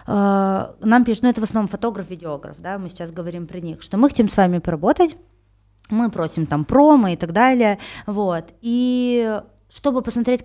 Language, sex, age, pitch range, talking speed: Russian, female, 20-39, 180-235 Hz, 180 wpm